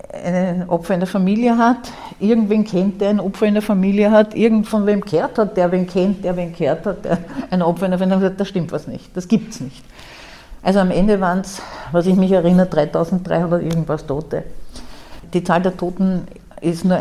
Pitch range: 170-205 Hz